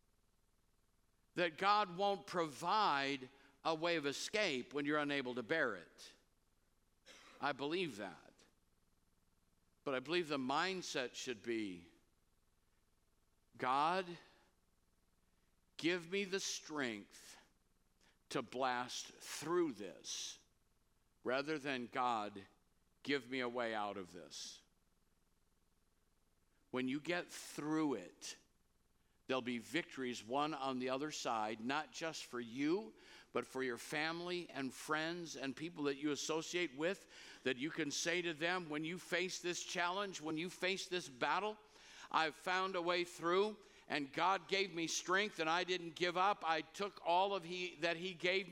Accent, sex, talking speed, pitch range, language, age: American, male, 135 wpm, 120-175 Hz, English, 50-69